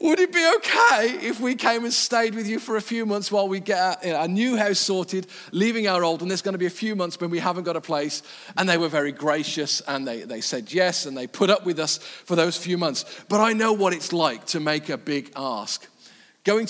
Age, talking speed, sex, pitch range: 40-59, 265 wpm, male, 160-210 Hz